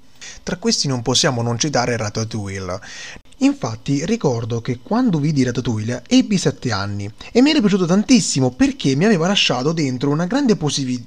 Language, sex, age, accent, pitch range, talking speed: Italian, male, 20-39, native, 120-165 Hz, 155 wpm